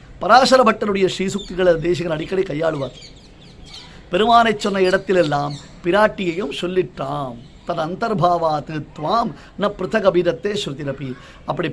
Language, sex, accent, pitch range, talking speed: Tamil, male, native, 160-195 Hz, 70 wpm